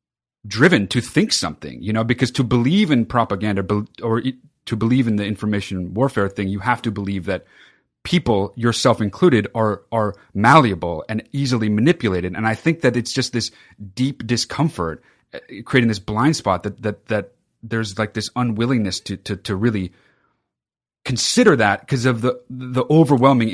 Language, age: English, 30-49